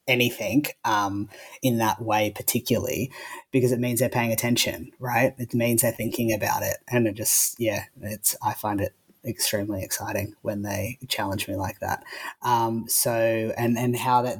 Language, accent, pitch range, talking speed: English, Australian, 110-125 Hz, 170 wpm